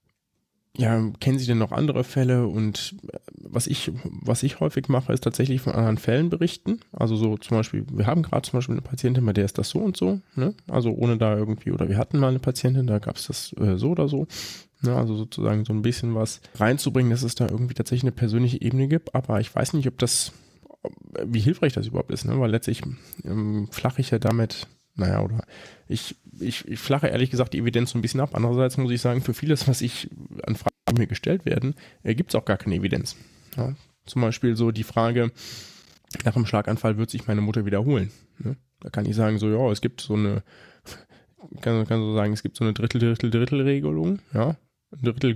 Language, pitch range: German, 110-135 Hz